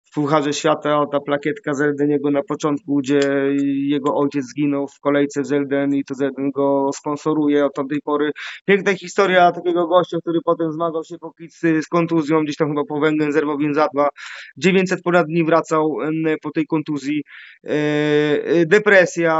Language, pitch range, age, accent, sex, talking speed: Polish, 150-170 Hz, 20-39, native, male, 165 wpm